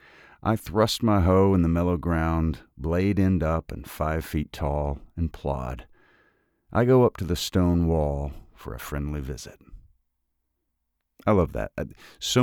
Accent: American